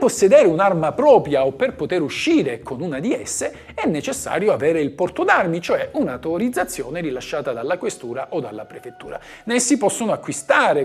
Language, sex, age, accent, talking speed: Italian, male, 50-69, native, 155 wpm